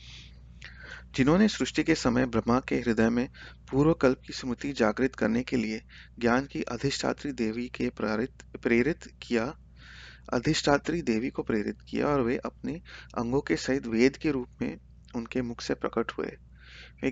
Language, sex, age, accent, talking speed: Hindi, male, 30-49, native, 160 wpm